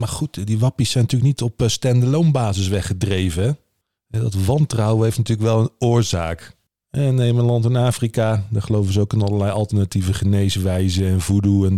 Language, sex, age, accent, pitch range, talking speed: Dutch, male, 40-59, Dutch, 100-130 Hz, 175 wpm